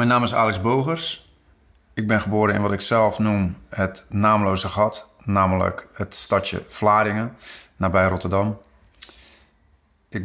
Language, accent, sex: Dutch, Dutch, male